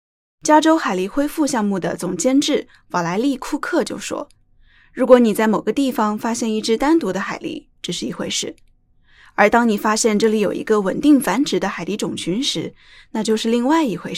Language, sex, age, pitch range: Chinese, female, 10-29, 185-255 Hz